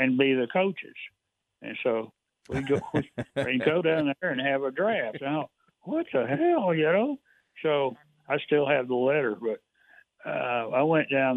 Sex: male